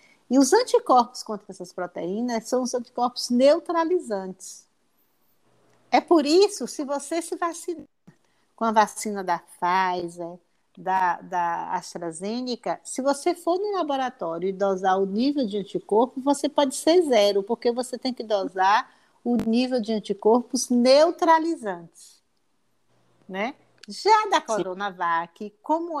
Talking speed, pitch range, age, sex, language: 125 wpm, 195-290 Hz, 50-69, female, Portuguese